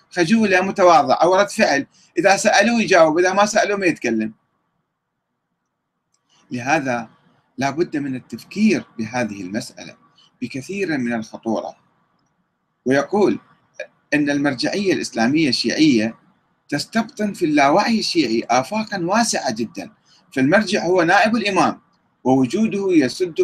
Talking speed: 100 wpm